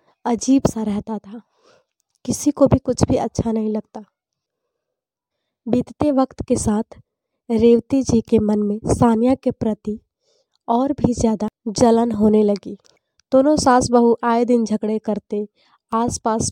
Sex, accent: female, native